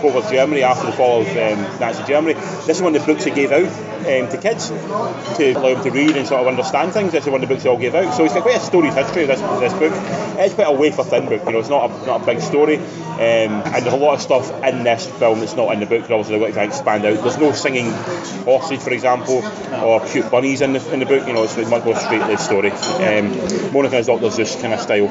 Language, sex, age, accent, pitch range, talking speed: English, male, 20-39, British, 125-150 Hz, 290 wpm